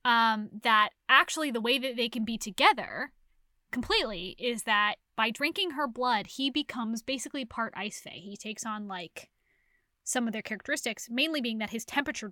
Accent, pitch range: American, 215-295 Hz